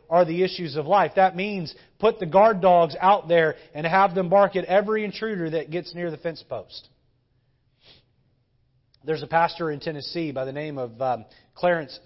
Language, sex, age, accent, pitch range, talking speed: English, male, 30-49, American, 155-210 Hz, 185 wpm